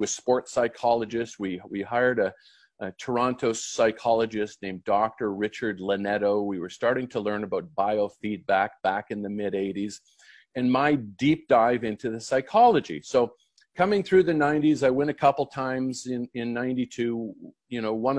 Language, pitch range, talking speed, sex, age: English, 105-135 Hz, 160 wpm, male, 50-69